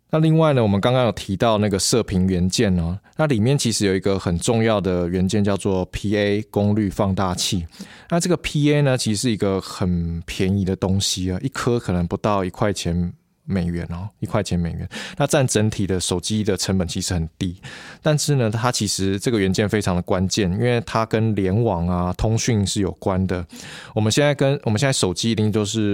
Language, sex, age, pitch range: Chinese, male, 20-39, 90-110 Hz